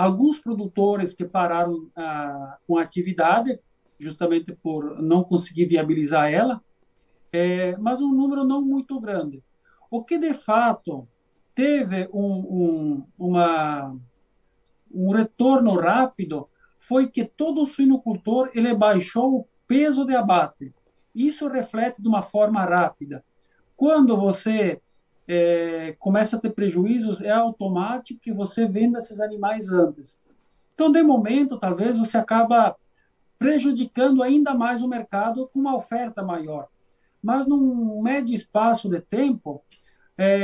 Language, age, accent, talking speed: Portuguese, 50-69, Brazilian, 125 wpm